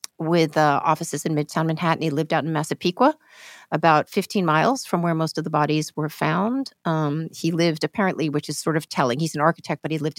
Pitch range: 155-195 Hz